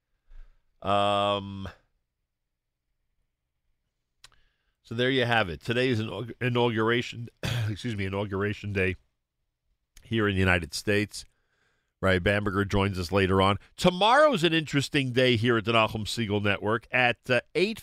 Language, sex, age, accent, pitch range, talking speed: English, male, 50-69, American, 95-140 Hz, 130 wpm